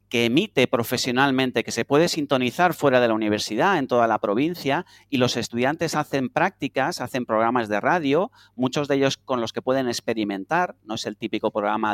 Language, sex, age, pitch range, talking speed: Spanish, male, 40-59, 110-150 Hz, 185 wpm